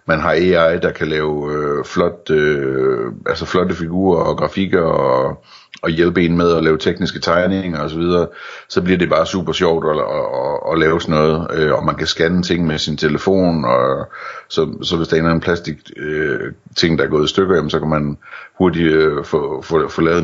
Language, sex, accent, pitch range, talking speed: Danish, male, native, 75-90 Hz, 210 wpm